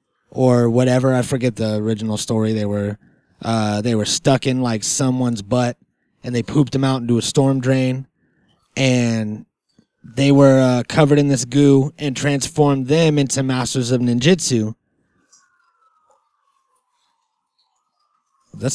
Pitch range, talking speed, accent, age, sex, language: 120-145 Hz, 135 wpm, American, 20-39, male, English